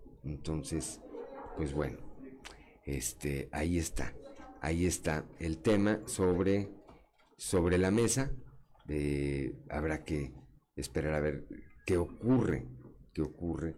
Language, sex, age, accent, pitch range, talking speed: Spanish, male, 50-69, Mexican, 80-120 Hz, 105 wpm